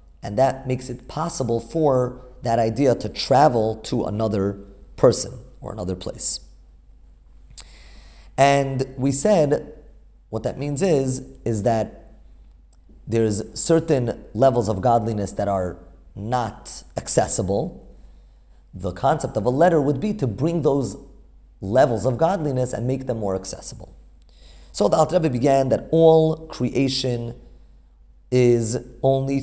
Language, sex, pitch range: English, male, 80-135 Hz